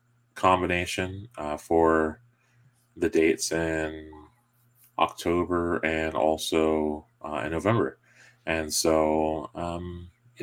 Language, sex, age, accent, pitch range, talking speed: English, male, 20-39, American, 80-110 Hz, 90 wpm